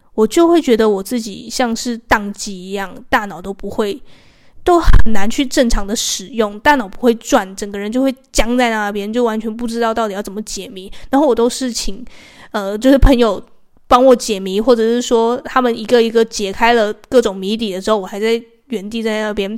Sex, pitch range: female, 210-255 Hz